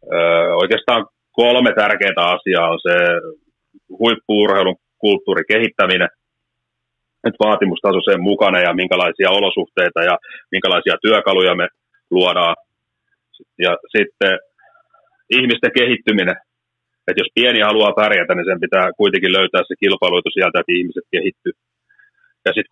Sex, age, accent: male, 30-49, native